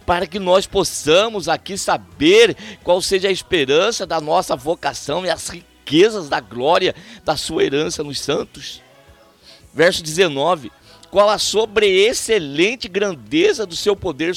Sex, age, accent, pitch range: male, 60-79, Brazilian, 175-255 Hz